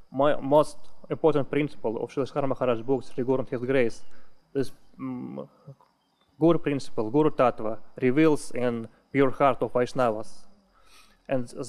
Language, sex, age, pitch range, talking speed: English, male, 20-39, 125-150 Hz, 130 wpm